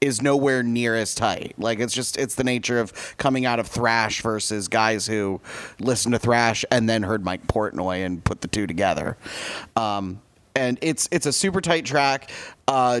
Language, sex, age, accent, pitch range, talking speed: English, male, 30-49, American, 105-130 Hz, 190 wpm